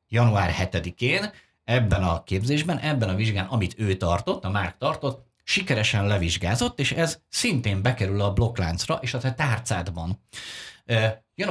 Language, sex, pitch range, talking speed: Hungarian, male, 100-130 Hz, 140 wpm